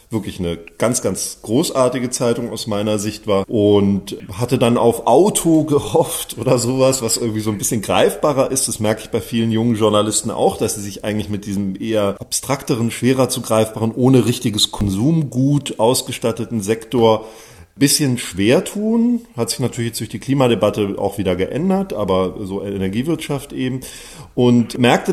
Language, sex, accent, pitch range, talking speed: German, male, German, 105-130 Hz, 165 wpm